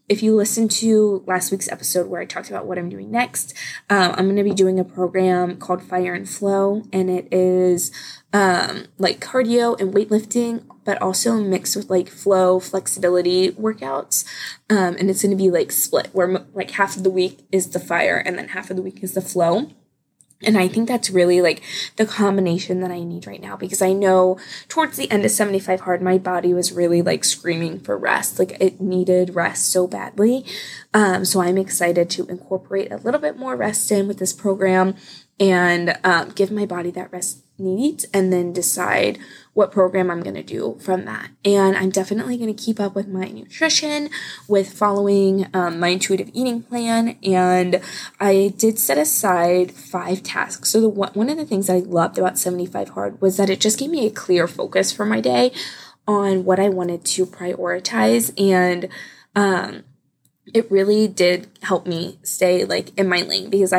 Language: English